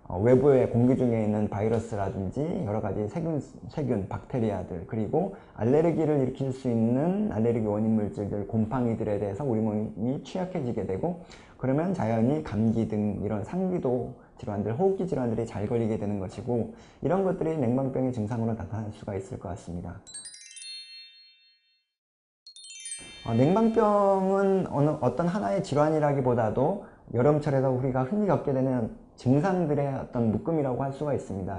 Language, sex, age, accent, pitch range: Korean, male, 20-39, native, 110-155 Hz